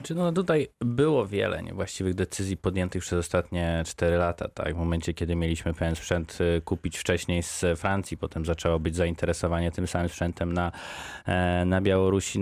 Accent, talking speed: native, 155 wpm